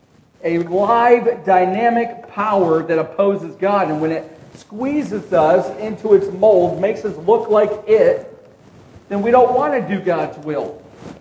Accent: American